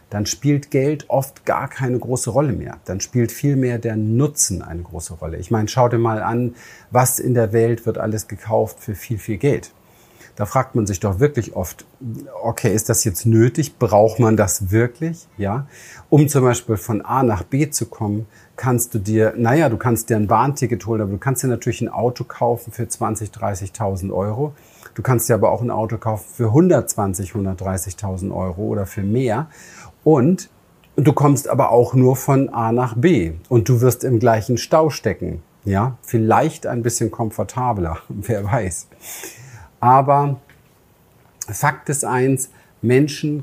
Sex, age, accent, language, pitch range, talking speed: male, 40-59, German, German, 105-130 Hz, 175 wpm